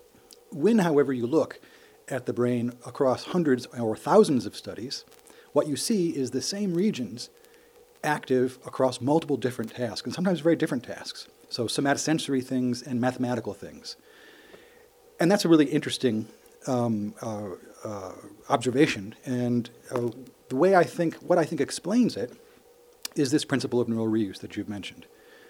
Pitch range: 120-160 Hz